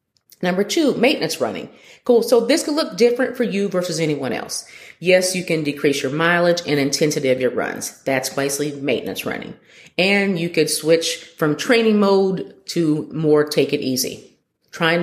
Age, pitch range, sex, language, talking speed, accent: 40-59, 145-200 Hz, female, English, 170 wpm, American